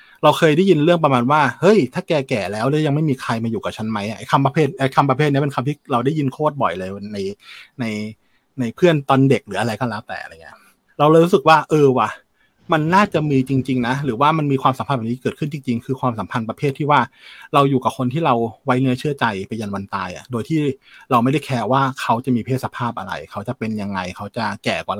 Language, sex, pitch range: Thai, male, 115-145 Hz